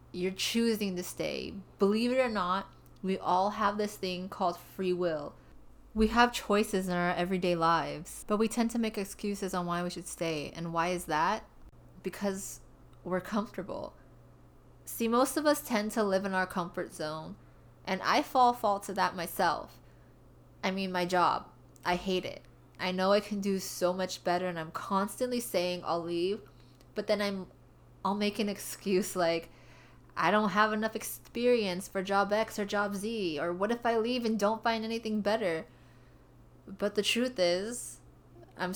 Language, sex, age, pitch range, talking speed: English, female, 20-39, 175-215 Hz, 175 wpm